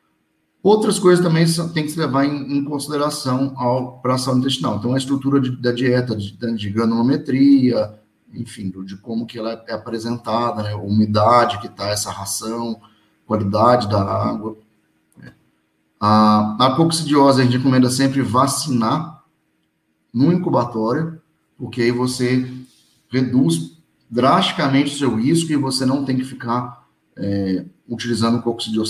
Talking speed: 135 wpm